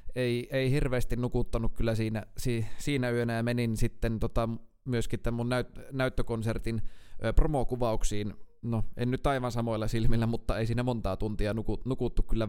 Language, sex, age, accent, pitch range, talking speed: Finnish, male, 20-39, native, 105-120 Hz, 160 wpm